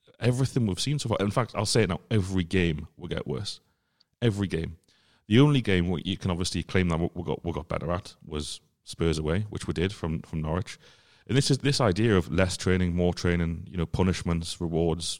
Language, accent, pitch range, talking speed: English, British, 85-105 Hz, 220 wpm